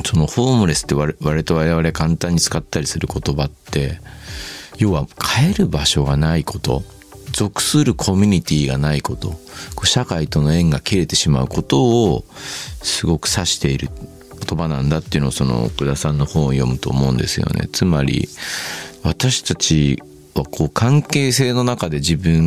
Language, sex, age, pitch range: Japanese, male, 40-59, 70-100 Hz